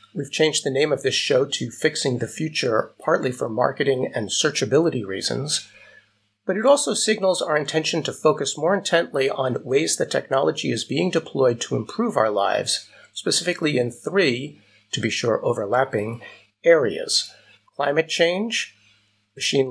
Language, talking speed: English, 150 wpm